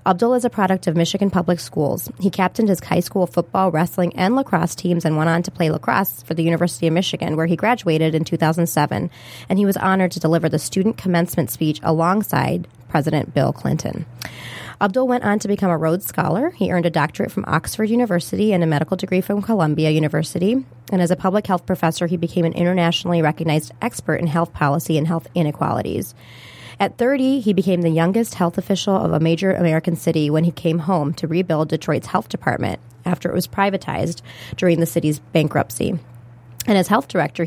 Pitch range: 160-185 Hz